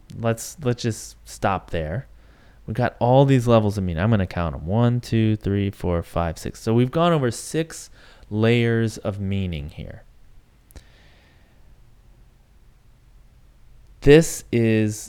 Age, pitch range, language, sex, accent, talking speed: 30-49, 90-115 Hz, English, male, American, 130 wpm